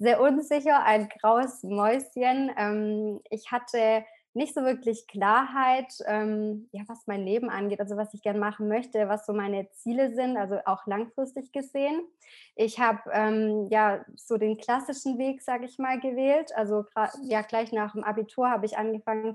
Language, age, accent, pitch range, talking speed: German, 20-39, German, 215-245 Hz, 155 wpm